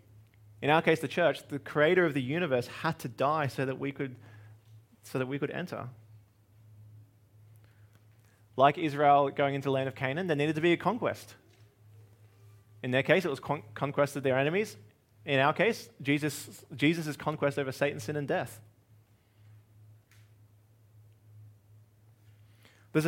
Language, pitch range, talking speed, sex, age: English, 110-150 Hz, 150 wpm, male, 20-39